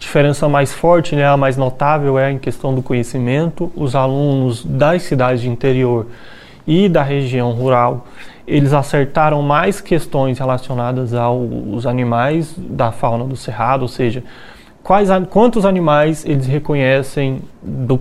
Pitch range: 130-165 Hz